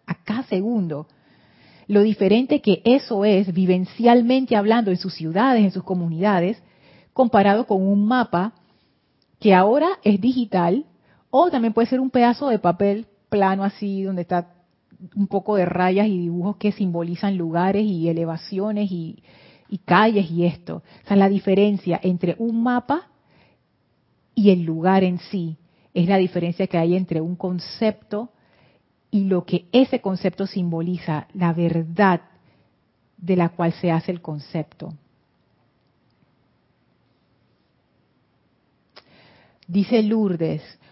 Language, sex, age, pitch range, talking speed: Spanish, female, 40-59, 175-220 Hz, 130 wpm